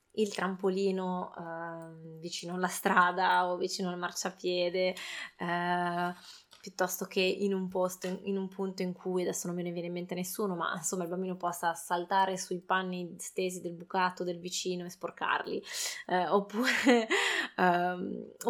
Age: 20-39